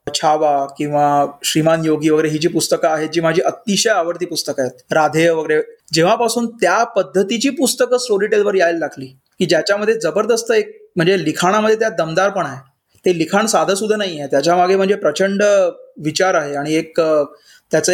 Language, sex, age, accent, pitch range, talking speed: Marathi, male, 30-49, native, 155-205 Hz, 170 wpm